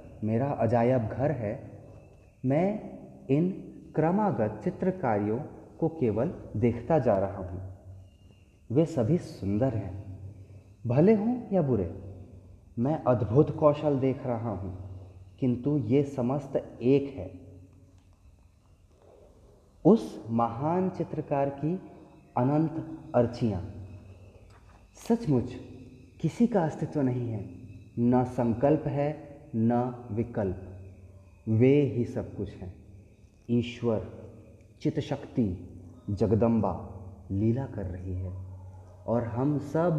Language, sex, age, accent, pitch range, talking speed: Hindi, male, 30-49, native, 95-140 Hz, 100 wpm